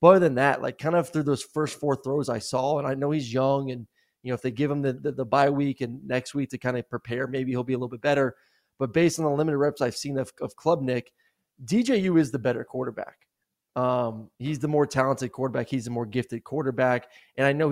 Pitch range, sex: 130-150 Hz, male